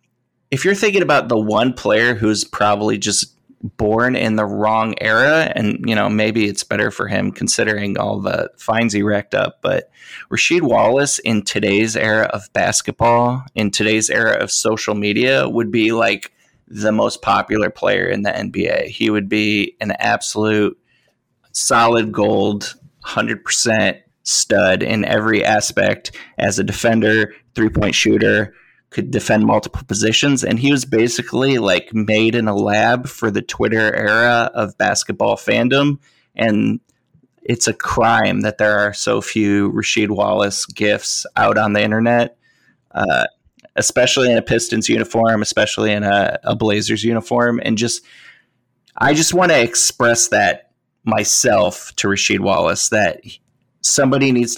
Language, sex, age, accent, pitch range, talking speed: English, male, 20-39, American, 105-120 Hz, 150 wpm